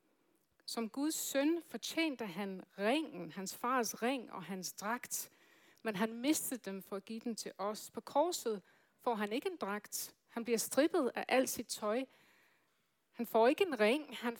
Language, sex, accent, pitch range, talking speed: Danish, female, native, 205-255 Hz, 175 wpm